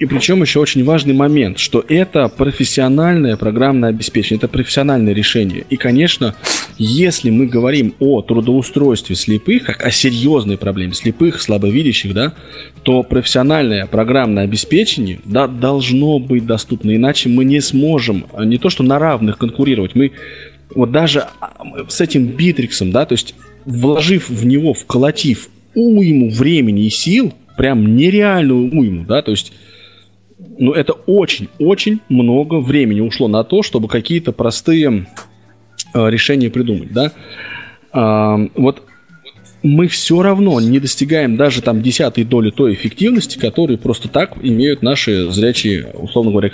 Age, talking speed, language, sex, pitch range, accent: 20-39, 130 wpm, Russian, male, 110-140 Hz, native